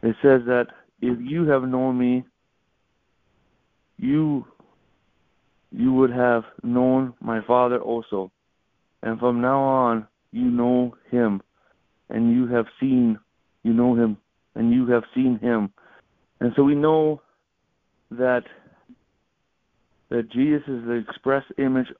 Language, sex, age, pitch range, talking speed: English, male, 60-79, 115-130 Hz, 125 wpm